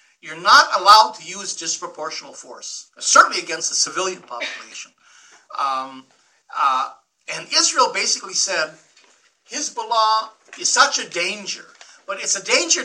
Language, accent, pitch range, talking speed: English, American, 180-280 Hz, 125 wpm